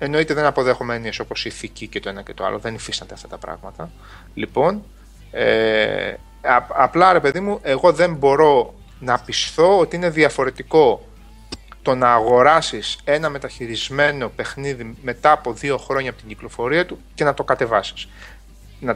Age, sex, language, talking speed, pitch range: 30-49, male, Greek, 160 wpm, 120-175 Hz